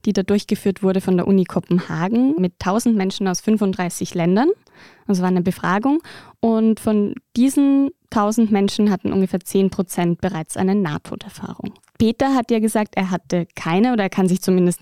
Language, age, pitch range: German, 20-39, 180-215 Hz